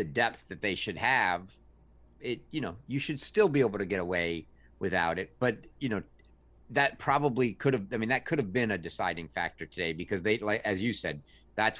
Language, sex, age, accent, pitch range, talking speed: English, male, 50-69, American, 90-120 Hz, 215 wpm